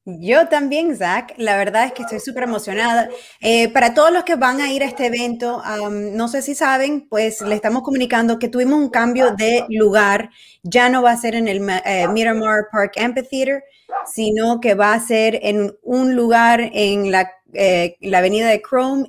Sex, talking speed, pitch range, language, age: female, 195 wpm, 195-245 Hz, Spanish, 20-39